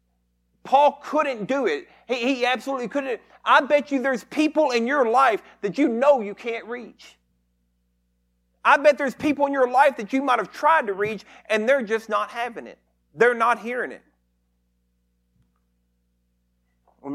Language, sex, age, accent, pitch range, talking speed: English, male, 40-59, American, 165-260 Hz, 160 wpm